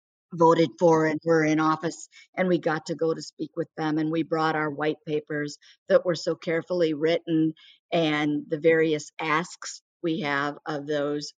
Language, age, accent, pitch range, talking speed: English, 50-69, American, 150-175 Hz, 180 wpm